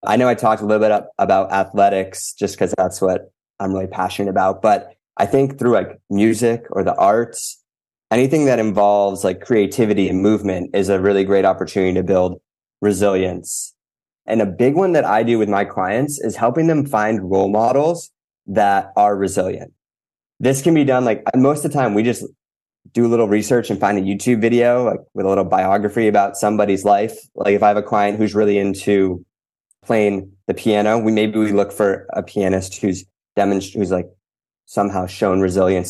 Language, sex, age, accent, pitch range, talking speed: English, male, 20-39, American, 95-110 Hz, 190 wpm